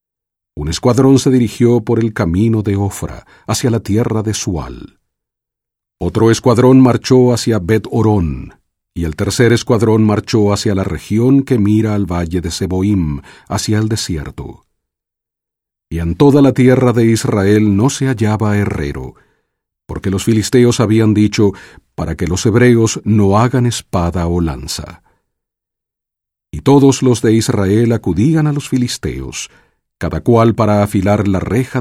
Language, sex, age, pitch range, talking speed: English, male, 50-69, 95-120 Hz, 145 wpm